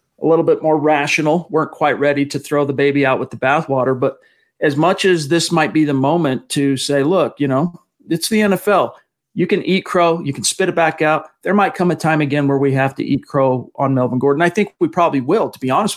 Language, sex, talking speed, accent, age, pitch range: English, male, 250 wpm, American, 40-59, 140-175 Hz